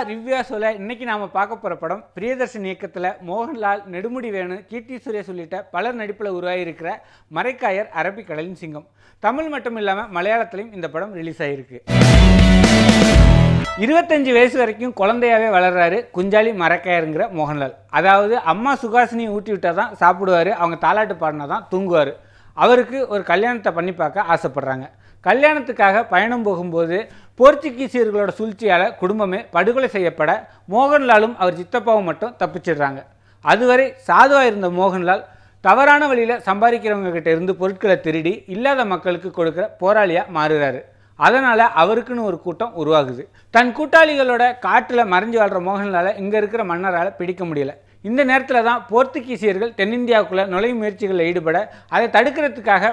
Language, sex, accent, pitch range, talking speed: Tamil, male, native, 175-235 Hz, 90 wpm